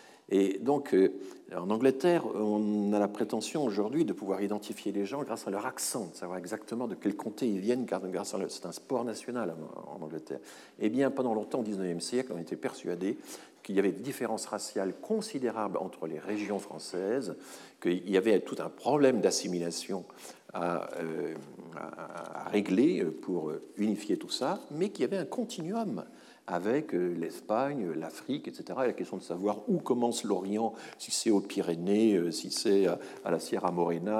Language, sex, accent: French, male, French